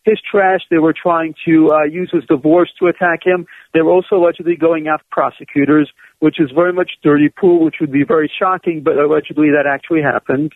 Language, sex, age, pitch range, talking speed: English, male, 50-69, 155-180 Hz, 205 wpm